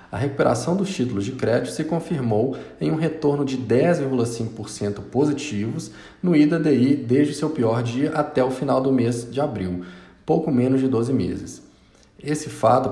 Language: Portuguese